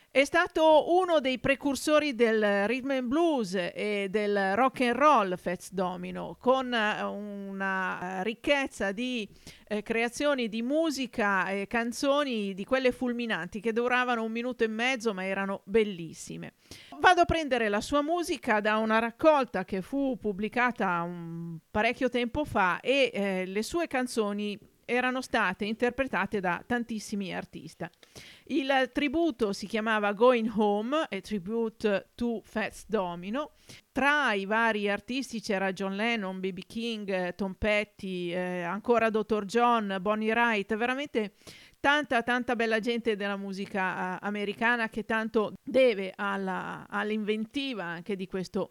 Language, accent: Italian, native